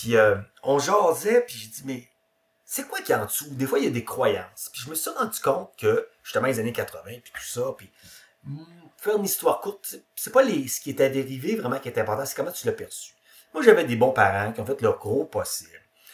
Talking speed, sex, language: 250 wpm, male, French